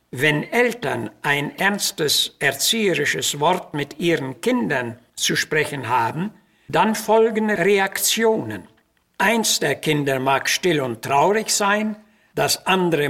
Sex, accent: male, German